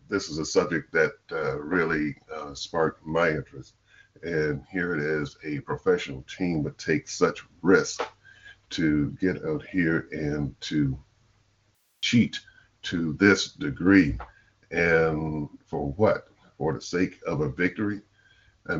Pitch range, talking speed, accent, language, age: 75-90 Hz, 135 wpm, American, English, 50-69